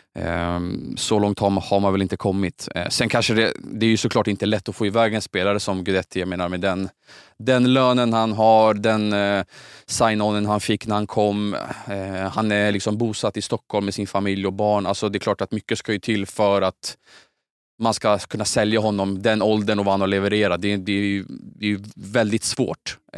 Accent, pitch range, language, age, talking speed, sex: Norwegian, 95-110 Hz, Swedish, 20-39, 215 wpm, male